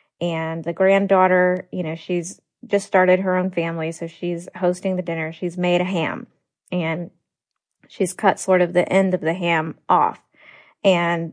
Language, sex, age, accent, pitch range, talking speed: English, female, 20-39, American, 175-215 Hz, 170 wpm